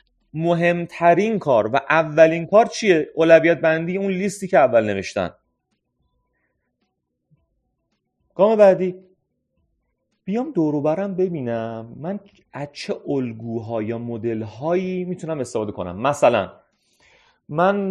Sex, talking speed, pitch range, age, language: male, 105 wpm, 130-185 Hz, 30-49, Persian